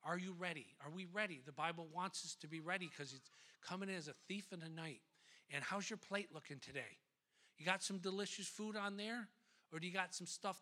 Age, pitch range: 50-69, 155-195 Hz